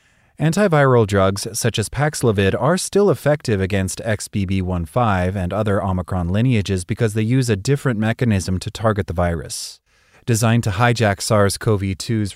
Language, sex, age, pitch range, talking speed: English, male, 30-49, 95-115 Hz, 135 wpm